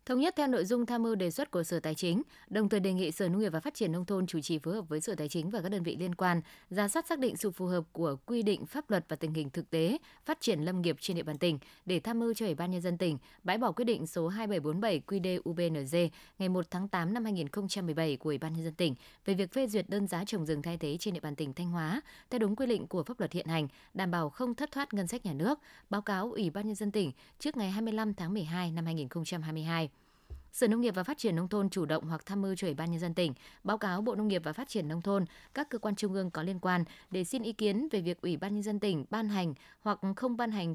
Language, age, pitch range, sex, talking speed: Vietnamese, 20-39, 170-220 Hz, female, 285 wpm